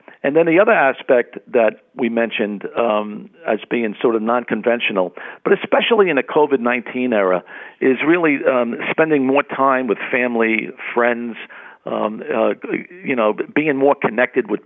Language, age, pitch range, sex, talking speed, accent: English, 50-69, 115-135 Hz, male, 150 wpm, American